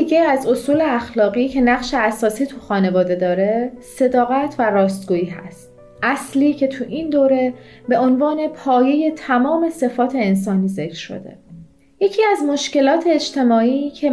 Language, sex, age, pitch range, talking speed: Persian, female, 30-49, 235-290 Hz, 135 wpm